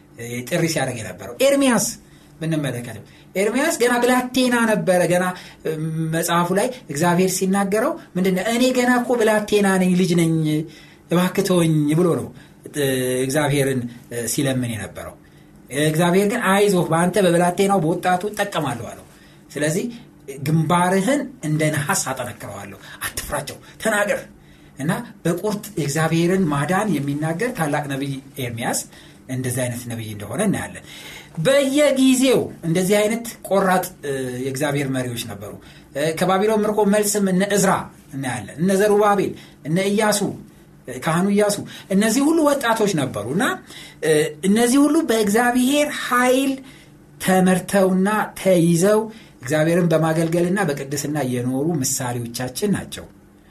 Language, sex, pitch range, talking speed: Amharic, male, 140-210 Hz, 95 wpm